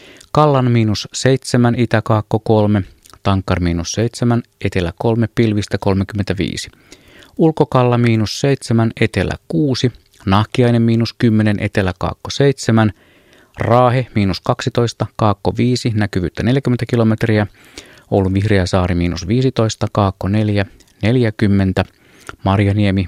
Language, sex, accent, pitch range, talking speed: Finnish, male, native, 100-125 Hz, 100 wpm